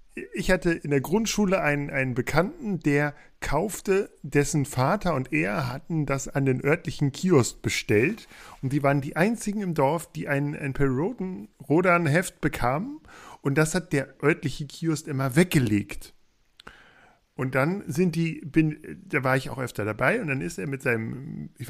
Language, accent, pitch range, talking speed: German, German, 130-170 Hz, 170 wpm